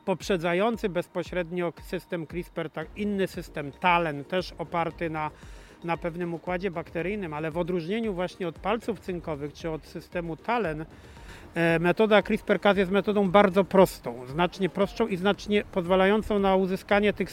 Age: 40-59